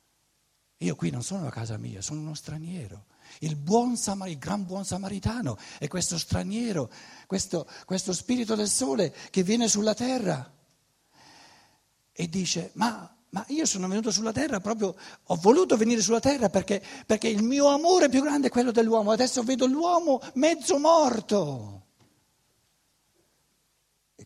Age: 60-79